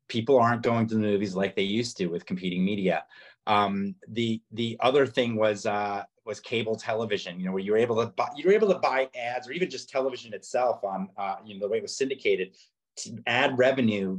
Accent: American